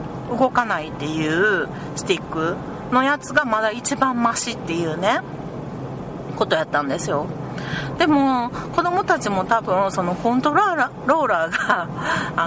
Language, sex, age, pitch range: Japanese, female, 40-59, 185-300 Hz